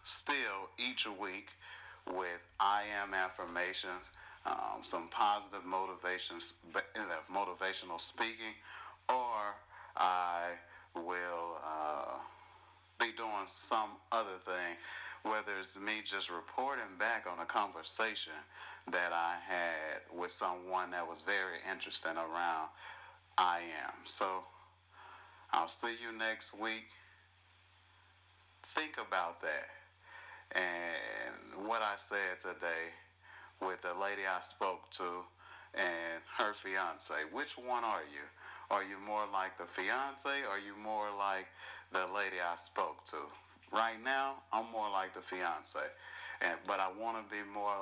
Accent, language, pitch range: American, English, 90-105 Hz